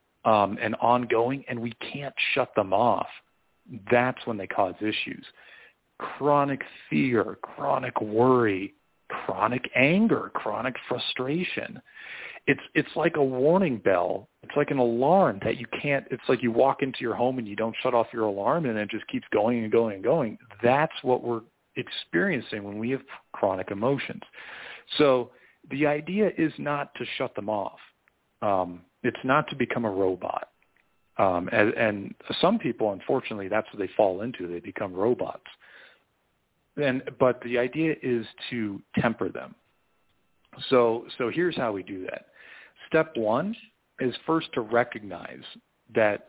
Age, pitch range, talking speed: 40-59, 110-140 Hz, 155 wpm